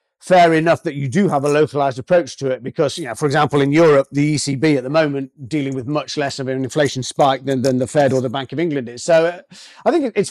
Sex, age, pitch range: male, 40-59, 135-170 Hz